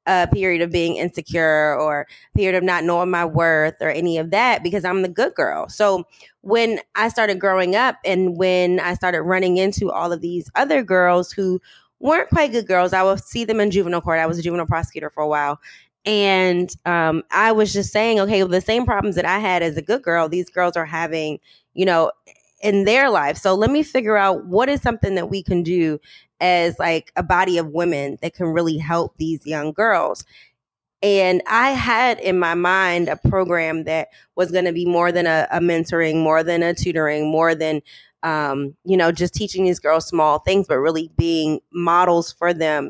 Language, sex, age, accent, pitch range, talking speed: English, female, 20-39, American, 160-195 Hz, 210 wpm